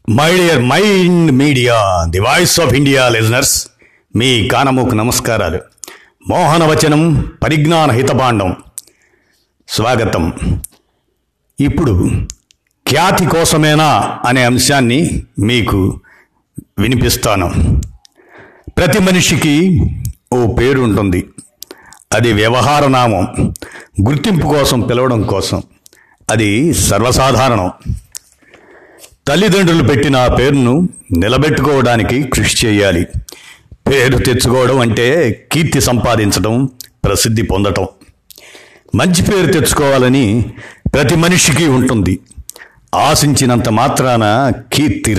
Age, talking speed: 60-79, 75 wpm